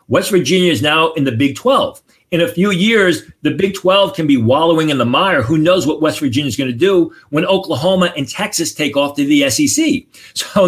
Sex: male